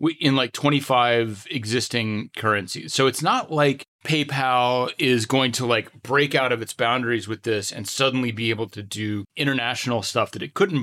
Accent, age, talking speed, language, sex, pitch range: American, 30-49, 175 wpm, English, male, 115-135 Hz